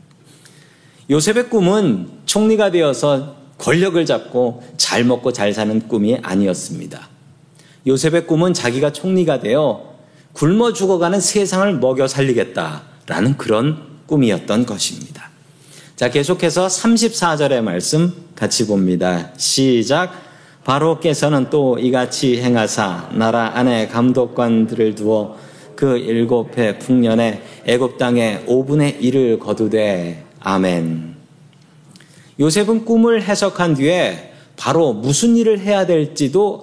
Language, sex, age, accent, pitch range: Korean, male, 40-59, native, 125-175 Hz